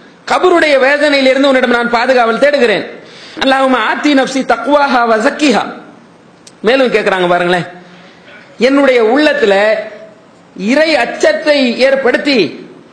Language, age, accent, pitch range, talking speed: English, 40-59, Indian, 215-290 Hz, 155 wpm